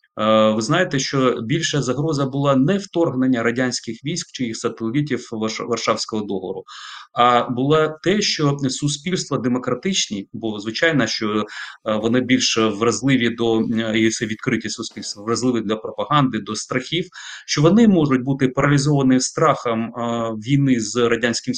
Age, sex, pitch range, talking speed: 30-49, male, 115-145 Hz, 125 wpm